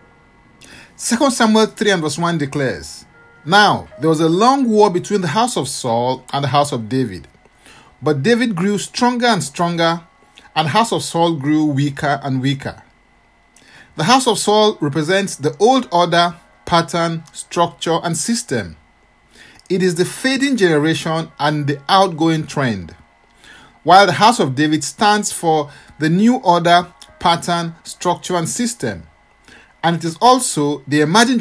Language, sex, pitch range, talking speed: English, male, 140-200 Hz, 150 wpm